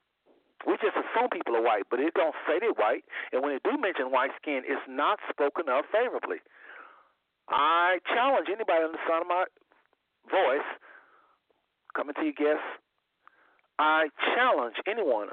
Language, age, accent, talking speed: English, 50-69, American, 155 wpm